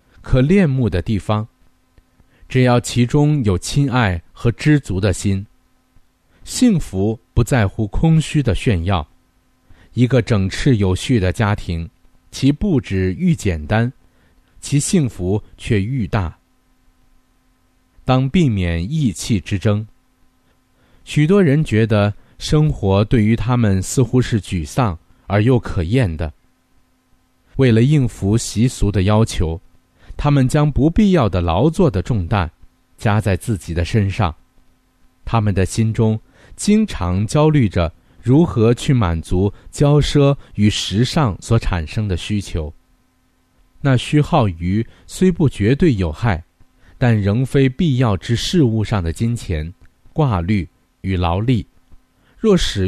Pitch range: 90-130 Hz